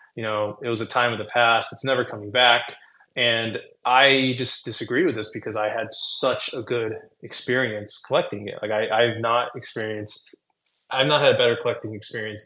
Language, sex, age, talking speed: English, male, 20-39, 195 wpm